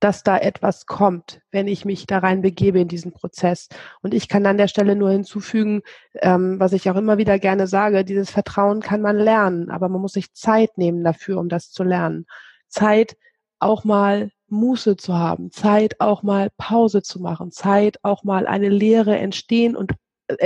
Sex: female